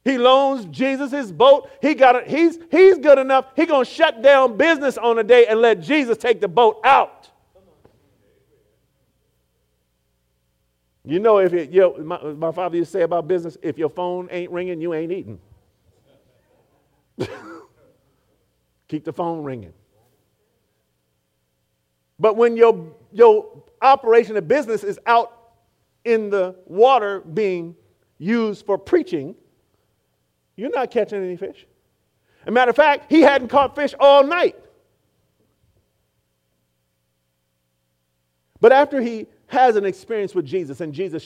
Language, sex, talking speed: English, male, 140 wpm